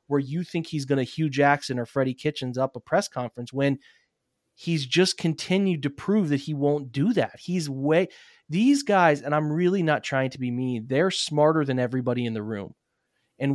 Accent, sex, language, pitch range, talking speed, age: American, male, English, 130-165 Hz, 205 wpm, 30-49